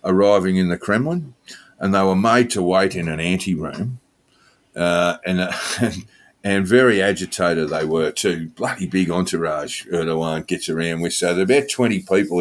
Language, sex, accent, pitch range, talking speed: English, male, Australian, 90-115 Hz, 175 wpm